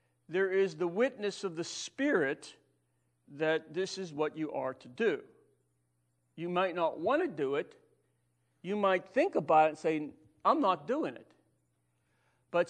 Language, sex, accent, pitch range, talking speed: English, male, American, 130-180 Hz, 160 wpm